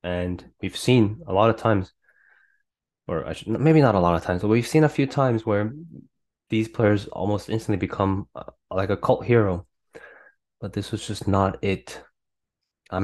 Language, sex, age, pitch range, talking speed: English, male, 20-39, 95-120 Hz, 180 wpm